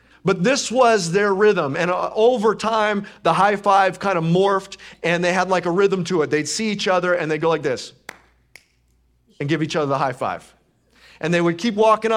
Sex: male